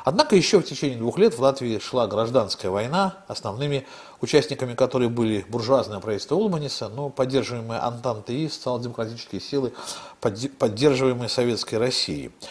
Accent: native